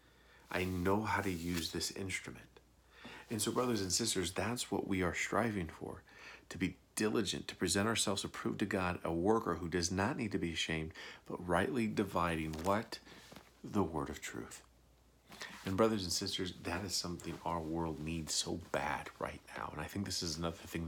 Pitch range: 80-100 Hz